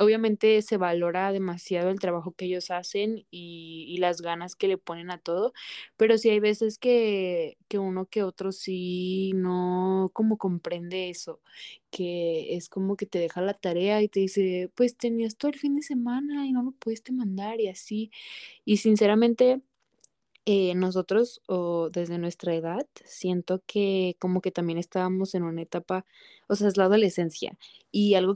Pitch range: 180-210 Hz